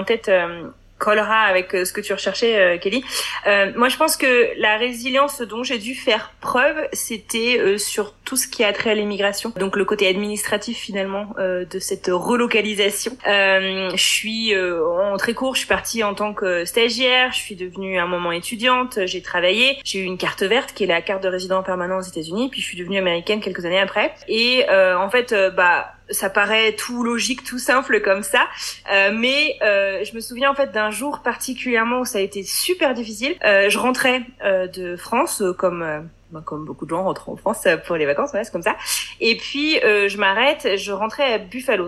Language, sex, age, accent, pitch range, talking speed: French, female, 20-39, French, 190-245 Hz, 220 wpm